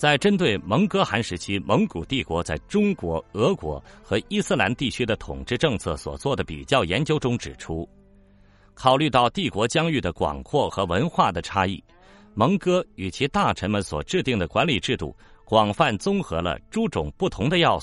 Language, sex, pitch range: Chinese, male, 80-135 Hz